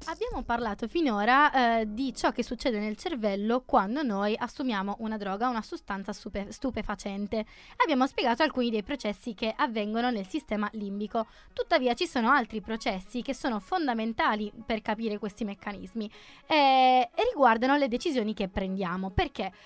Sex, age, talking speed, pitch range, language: female, 20-39, 150 wpm, 210-270 Hz, Italian